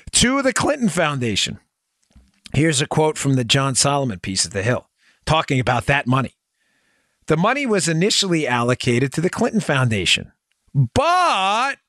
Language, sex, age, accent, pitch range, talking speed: English, male, 50-69, American, 140-235 Hz, 145 wpm